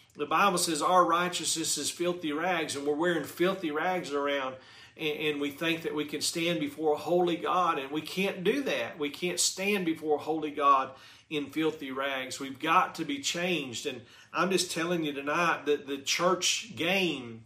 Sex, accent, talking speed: male, American, 190 wpm